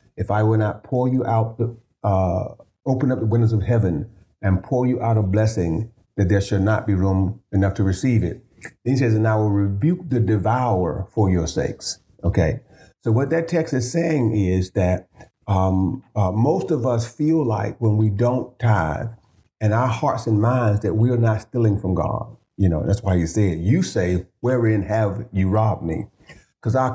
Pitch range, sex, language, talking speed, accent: 100-125 Hz, male, English, 200 wpm, American